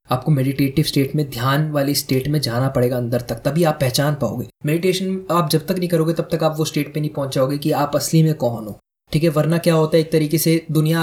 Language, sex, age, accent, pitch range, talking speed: Hindi, male, 20-39, native, 135-160 Hz, 250 wpm